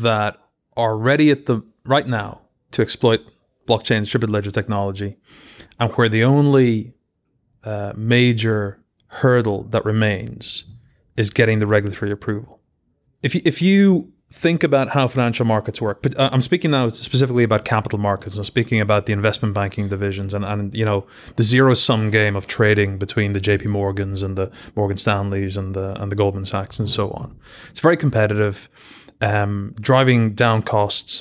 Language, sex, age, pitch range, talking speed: English, male, 30-49, 105-120 Hz, 165 wpm